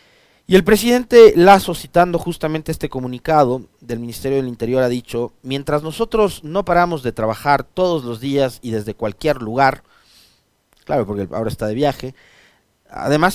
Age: 30-49